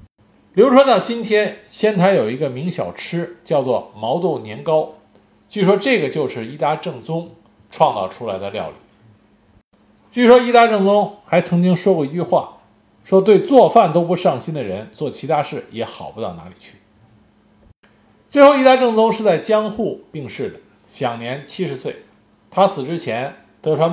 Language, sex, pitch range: Chinese, male, 130-205 Hz